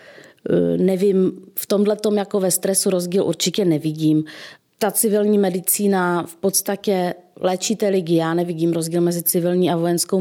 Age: 30-49